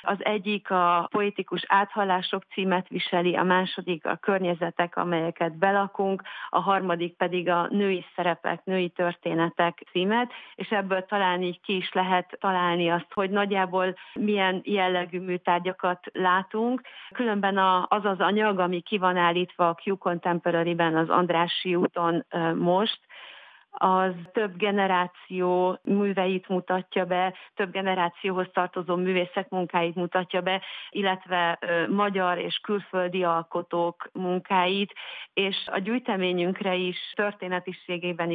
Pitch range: 175-195 Hz